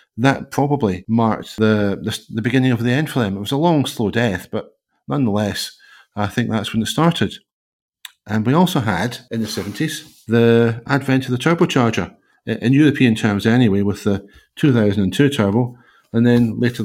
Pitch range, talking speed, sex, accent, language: 105-125 Hz, 170 wpm, male, British, English